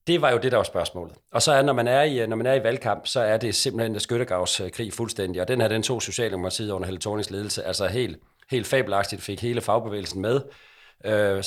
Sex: male